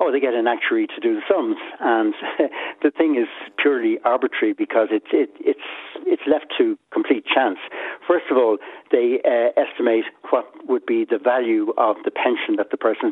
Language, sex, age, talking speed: English, male, 60-79, 190 wpm